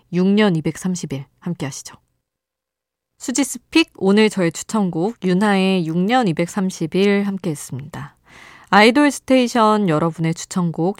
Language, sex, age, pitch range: Korean, female, 20-39, 165-240 Hz